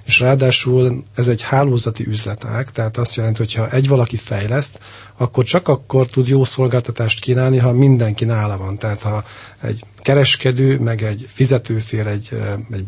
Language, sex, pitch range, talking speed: Hungarian, male, 105-125 Hz, 165 wpm